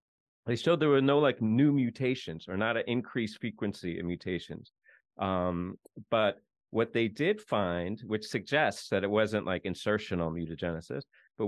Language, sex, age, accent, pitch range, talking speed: English, male, 30-49, American, 95-125 Hz, 155 wpm